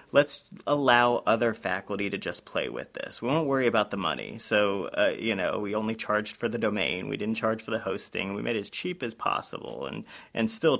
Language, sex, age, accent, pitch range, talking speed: English, male, 30-49, American, 105-115 Hz, 230 wpm